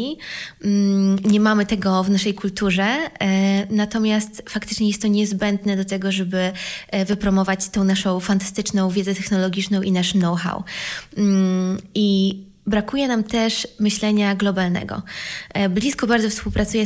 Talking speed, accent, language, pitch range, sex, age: 115 wpm, native, Polish, 195-215 Hz, female, 20-39